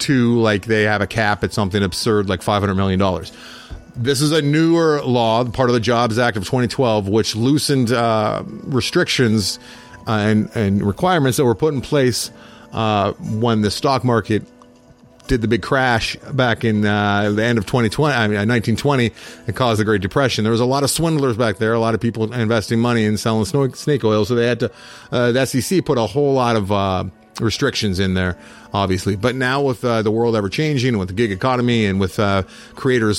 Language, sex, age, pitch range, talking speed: English, male, 40-59, 105-130 Hz, 205 wpm